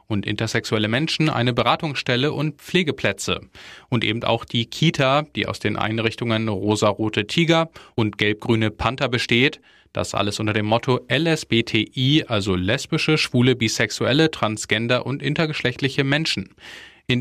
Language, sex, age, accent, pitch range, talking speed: German, male, 10-29, German, 110-140 Hz, 130 wpm